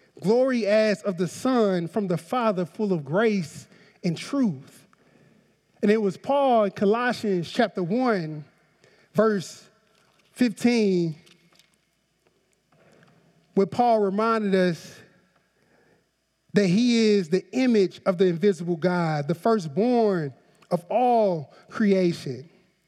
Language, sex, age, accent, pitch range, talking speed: English, male, 30-49, American, 175-225 Hz, 110 wpm